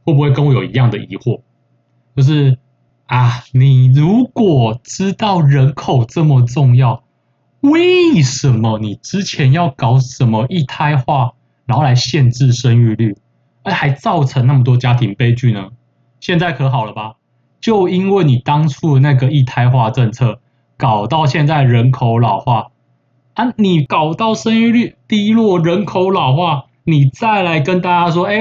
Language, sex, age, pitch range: Chinese, male, 20-39, 120-160 Hz